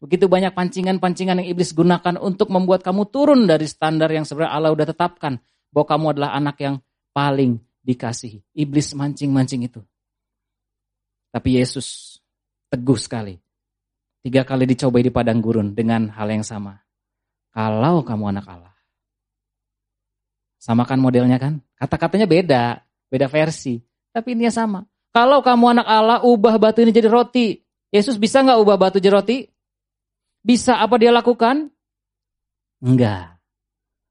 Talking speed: 135 wpm